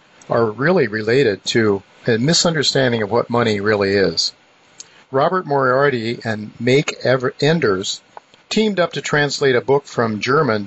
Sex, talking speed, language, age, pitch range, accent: male, 135 wpm, English, 50-69, 110-135 Hz, American